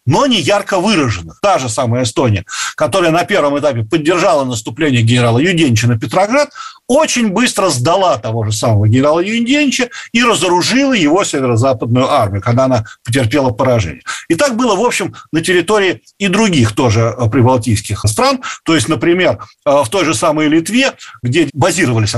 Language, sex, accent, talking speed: Russian, male, native, 155 wpm